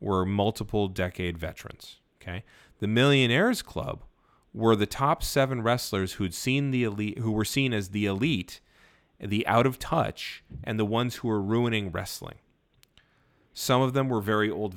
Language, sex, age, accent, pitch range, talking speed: English, male, 30-49, American, 95-125 Hz, 160 wpm